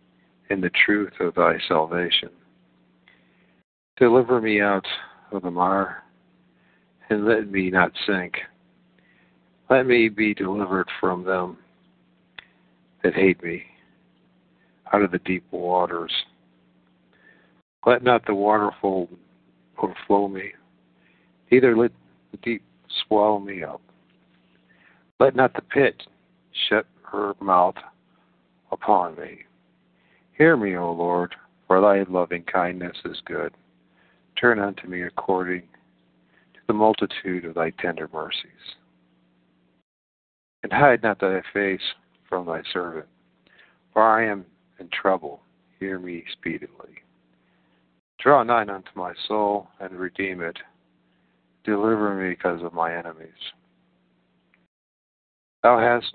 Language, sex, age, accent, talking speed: English, male, 60-79, American, 115 wpm